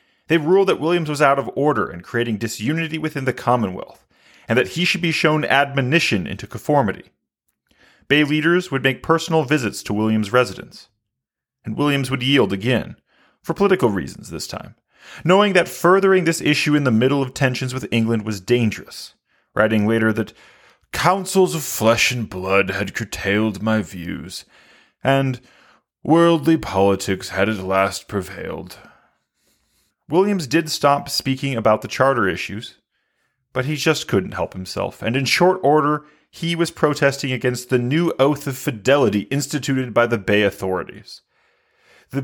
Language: English